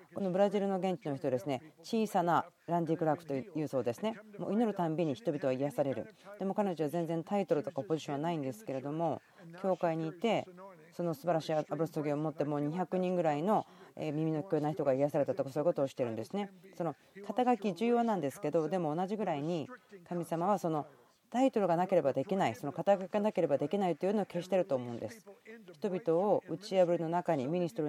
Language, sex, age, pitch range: Japanese, female, 40-59, 150-190 Hz